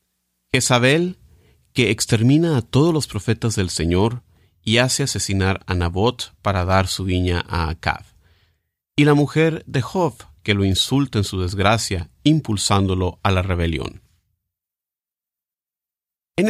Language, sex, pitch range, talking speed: English, male, 90-130 Hz, 135 wpm